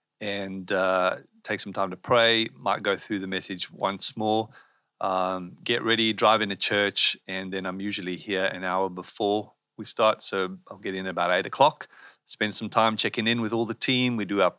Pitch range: 105-125 Hz